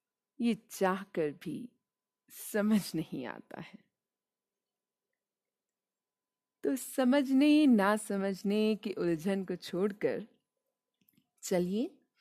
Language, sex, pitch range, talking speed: Hindi, female, 180-255 Hz, 85 wpm